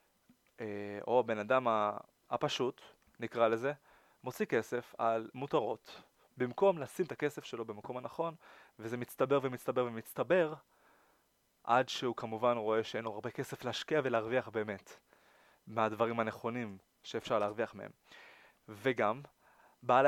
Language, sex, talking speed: Hebrew, male, 115 wpm